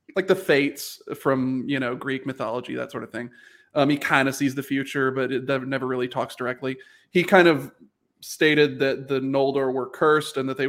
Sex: male